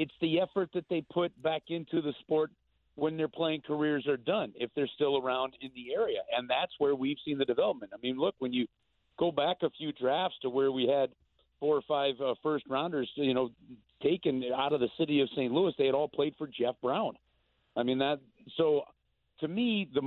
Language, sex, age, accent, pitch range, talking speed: English, male, 50-69, American, 130-160 Hz, 220 wpm